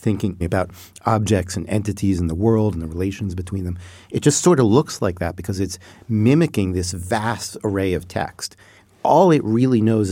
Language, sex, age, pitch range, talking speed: English, male, 40-59, 90-115 Hz, 190 wpm